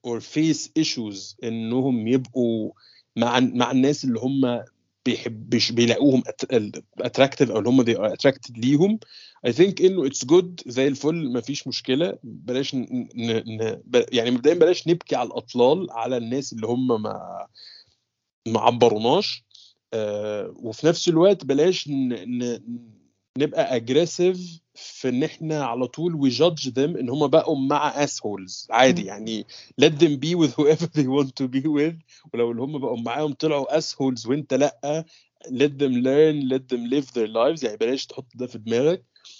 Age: 30-49